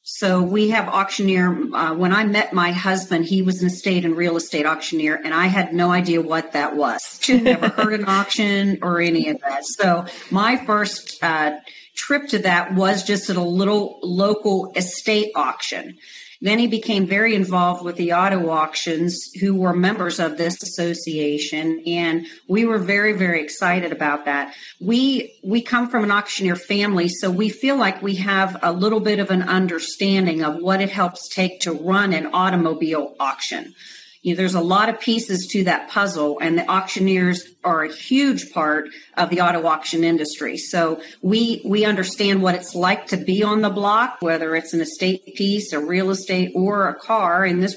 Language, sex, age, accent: English, female, 40-59, American